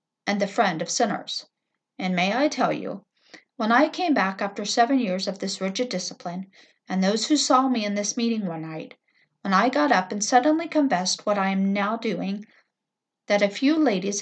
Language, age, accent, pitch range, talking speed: English, 50-69, American, 195-255 Hz, 200 wpm